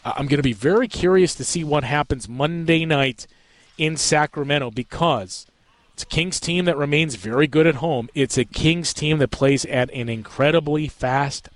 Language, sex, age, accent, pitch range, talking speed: English, male, 40-59, American, 125-165 Hz, 180 wpm